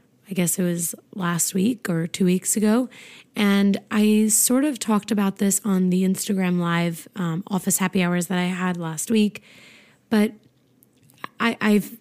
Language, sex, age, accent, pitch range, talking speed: English, female, 20-39, American, 185-230 Hz, 160 wpm